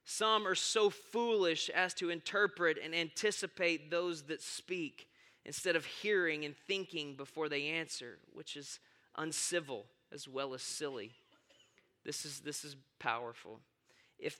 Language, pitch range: English, 155-185 Hz